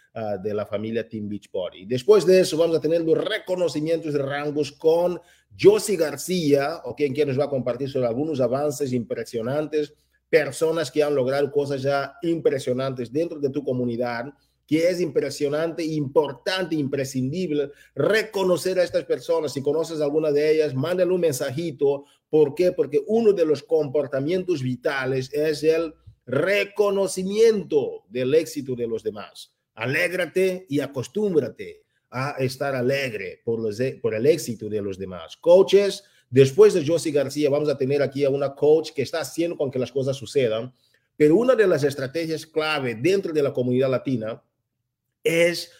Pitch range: 135-175 Hz